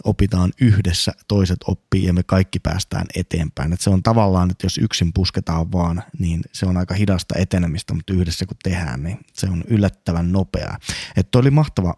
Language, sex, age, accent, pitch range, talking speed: Finnish, male, 20-39, native, 90-100 Hz, 180 wpm